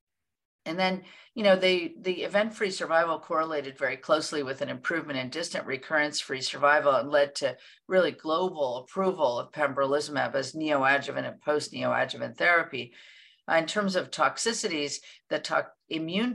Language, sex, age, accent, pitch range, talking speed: English, female, 50-69, American, 145-185 Hz, 140 wpm